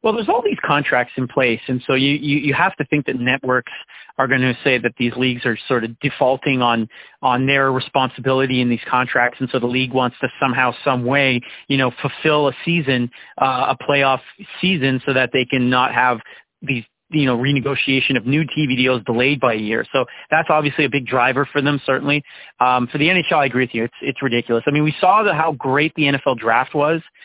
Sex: male